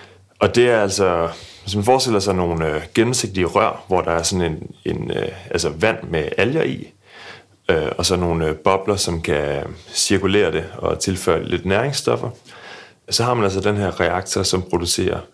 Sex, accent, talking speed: male, native, 185 wpm